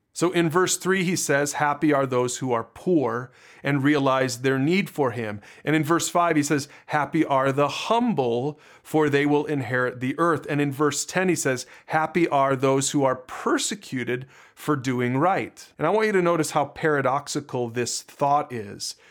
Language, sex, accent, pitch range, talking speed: English, male, American, 130-160 Hz, 190 wpm